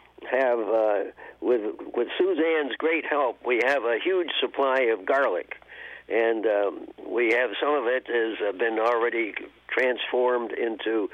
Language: English